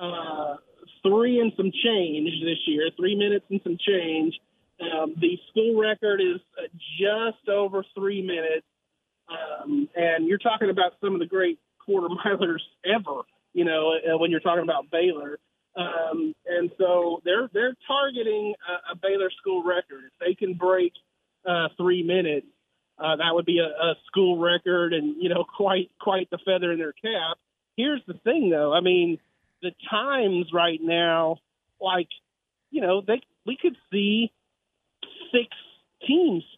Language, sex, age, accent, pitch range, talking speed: English, male, 40-59, American, 165-200 Hz, 160 wpm